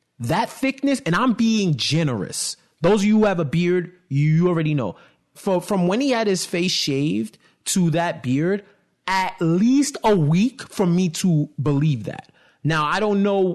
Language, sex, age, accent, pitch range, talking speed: English, male, 30-49, American, 120-165 Hz, 175 wpm